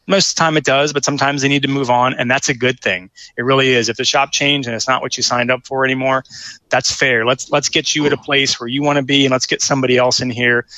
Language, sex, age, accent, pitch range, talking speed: English, male, 30-49, American, 120-145 Hz, 305 wpm